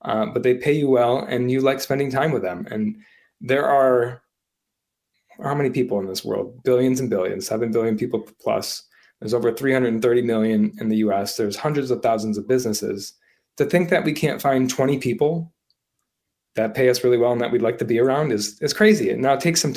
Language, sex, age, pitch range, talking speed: English, male, 20-39, 115-140 Hz, 215 wpm